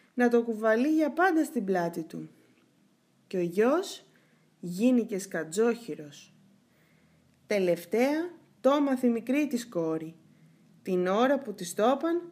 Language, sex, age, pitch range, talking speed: Greek, female, 20-39, 185-255 Hz, 115 wpm